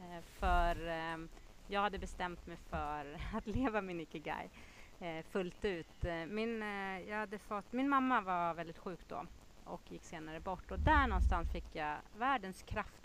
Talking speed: 165 wpm